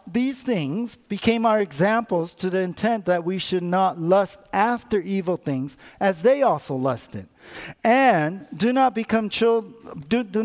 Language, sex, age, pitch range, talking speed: English, male, 50-69, 160-205 Hz, 155 wpm